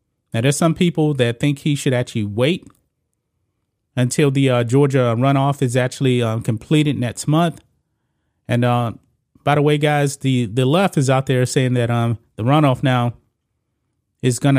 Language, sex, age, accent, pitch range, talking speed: English, male, 30-49, American, 120-145 Hz, 170 wpm